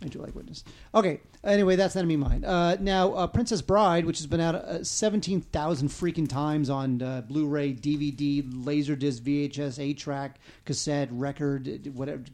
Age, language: 40-59, English